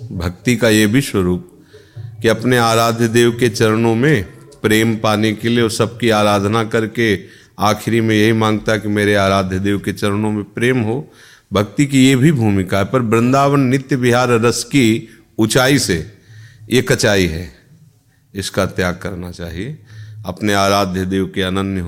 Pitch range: 95-115 Hz